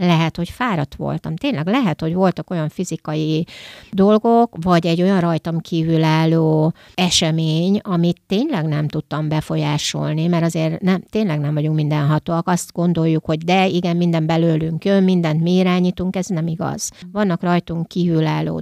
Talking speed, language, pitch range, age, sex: 145 wpm, Hungarian, 160-185 Hz, 60-79, female